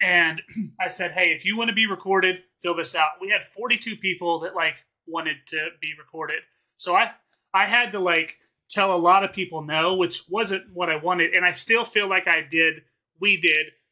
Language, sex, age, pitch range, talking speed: English, male, 30-49, 160-195 Hz, 210 wpm